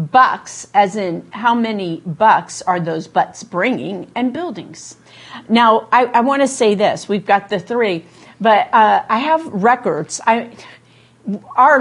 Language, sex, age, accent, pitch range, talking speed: English, female, 50-69, American, 175-225 Hz, 140 wpm